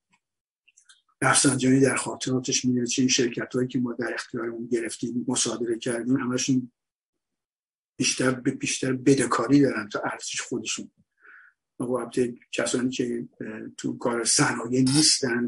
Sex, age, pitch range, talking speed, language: male, 50-69, 120-135 Hz, 115 wpm, Persian